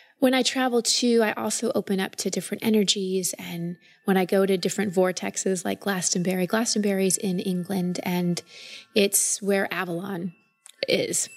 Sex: female